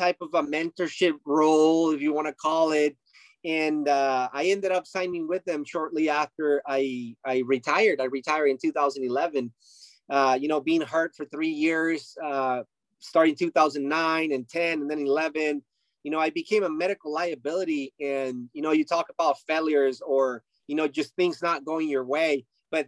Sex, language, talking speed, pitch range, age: male, English, 180 wpm, 140-165 Hz, 30-49